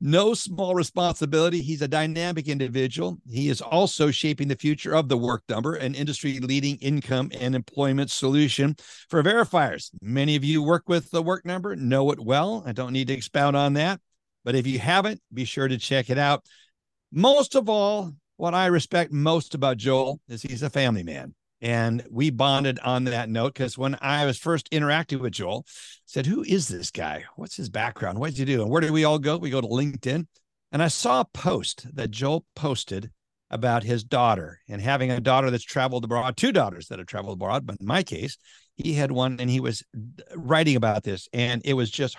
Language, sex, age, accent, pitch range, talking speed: English, male, 60-79, American, 125-160 Hz, 205 wpm